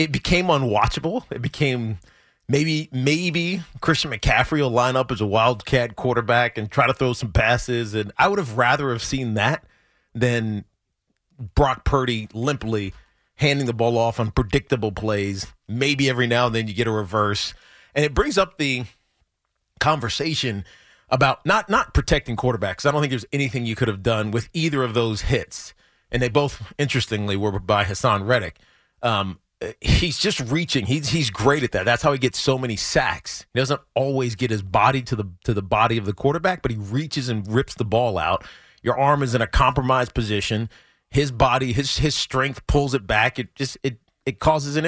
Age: 30-49